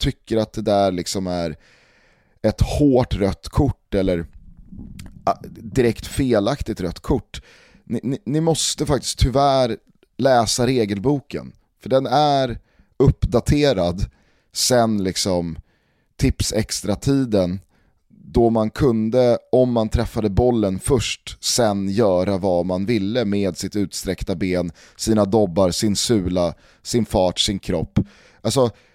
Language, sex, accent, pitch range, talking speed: Swedish, male, native, 95-130 Hz, 120 wpm